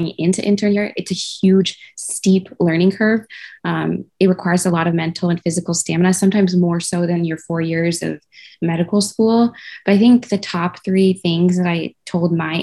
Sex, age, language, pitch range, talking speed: female, 20-39, English, 170-195 Hz, 185 wpm